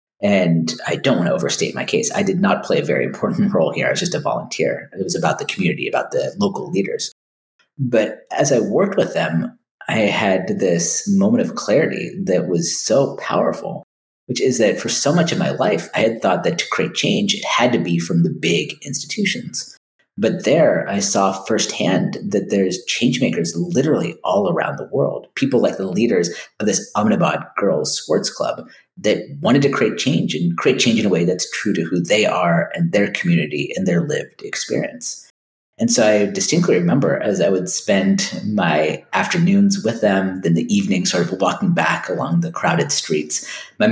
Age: 30-49